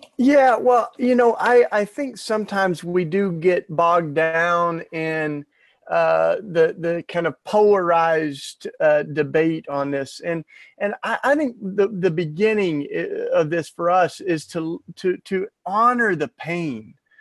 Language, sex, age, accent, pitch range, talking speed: English, male, 40-59, American, 150-185 Hz, 150 wpm